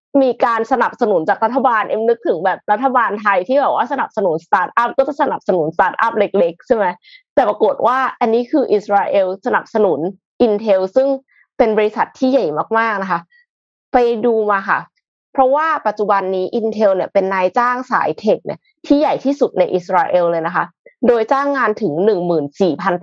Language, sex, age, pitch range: Thai, female, 20-39, 190-250 Hz